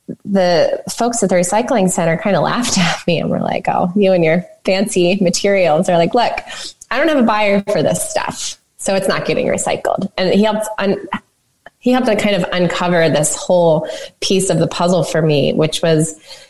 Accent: American